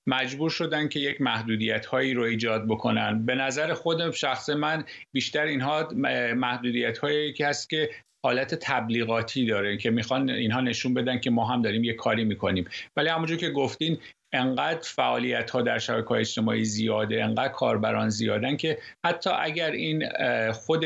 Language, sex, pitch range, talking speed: Persian, male, 110-145 Hz, 165 wpm